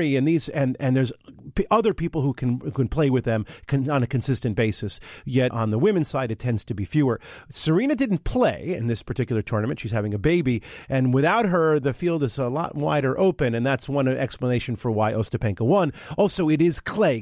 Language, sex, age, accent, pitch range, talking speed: English, male, 40-59, American, 115-155 Hz, 215 wpm